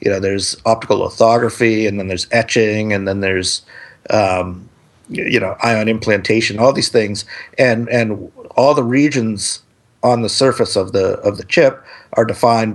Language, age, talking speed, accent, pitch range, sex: English, 50-69, 165 wpm, American, 100-115 Hz, male